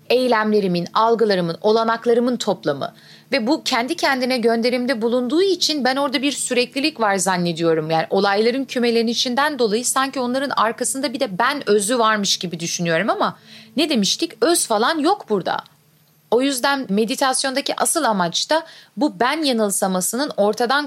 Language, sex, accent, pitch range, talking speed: Turkish, female, native, 205-260 Hz, 140 wpm